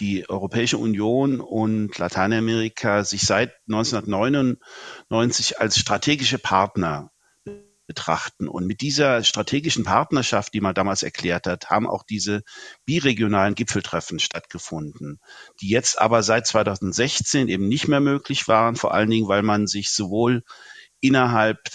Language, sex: German, male